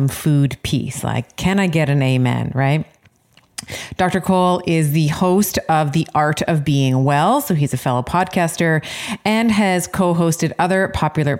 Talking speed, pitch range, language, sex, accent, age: 160 wpm, 140-175 Hz, English, female, American, 30-49